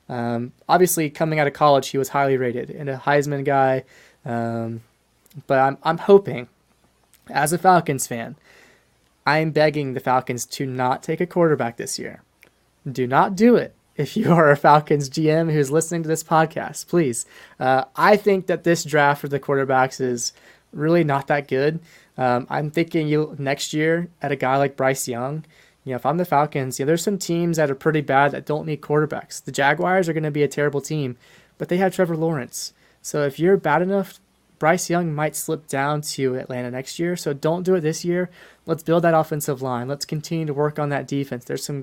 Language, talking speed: English, 205 wpm